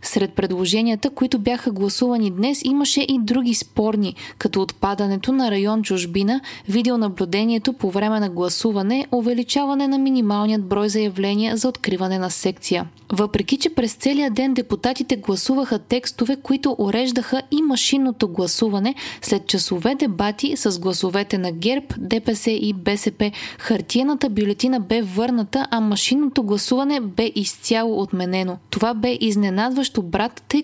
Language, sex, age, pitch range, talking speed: Bulgarian, female, 20-39, 200-260 Hz, 130 wpm